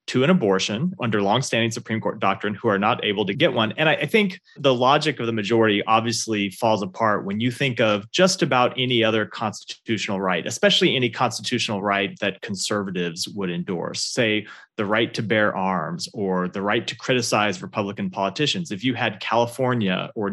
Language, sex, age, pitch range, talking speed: English, male, 30-49, 100-125 Hz, 185 wpm